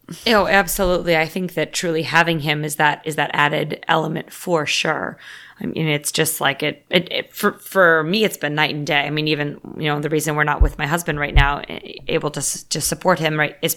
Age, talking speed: 20-39, 230 wpm